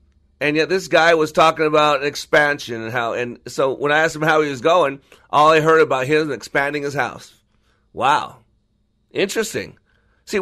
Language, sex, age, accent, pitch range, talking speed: English, male, 40-59, American, 125-160 Hz, 180 wpm